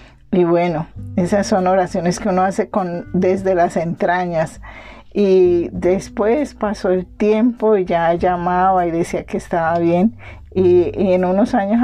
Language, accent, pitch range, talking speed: Spanish, American, 180-210 Hz, 145 wpm